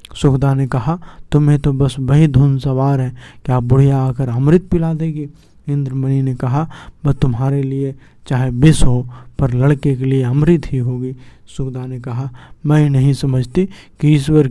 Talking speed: 165 wpm